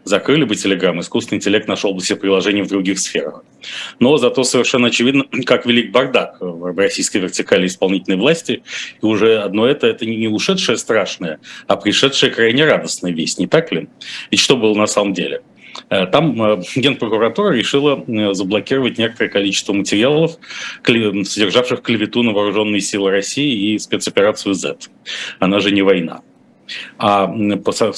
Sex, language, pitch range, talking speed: male, Russian, 100-125 Hz, 145 wpm